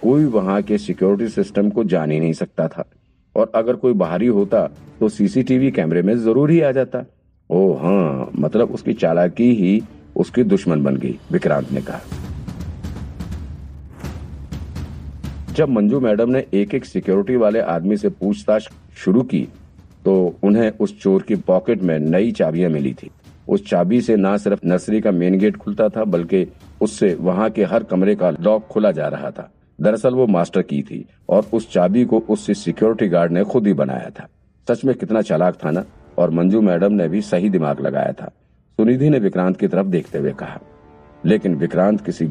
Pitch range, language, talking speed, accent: 80-110 Hz, Hindi, 180 wpm, native